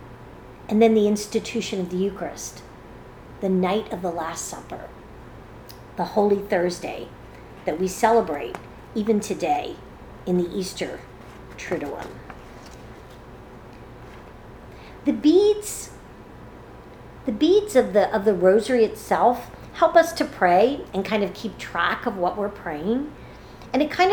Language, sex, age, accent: English, female, 50-69, American